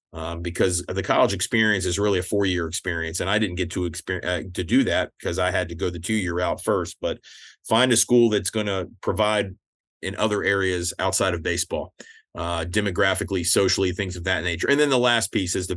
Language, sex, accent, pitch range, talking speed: English, male, American, 90-110 Hz, 225 wpm